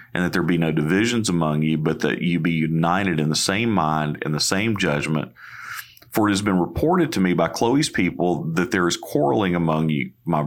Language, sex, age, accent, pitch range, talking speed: English, male, 40-59, American, 80-95 Hz, 220 wpm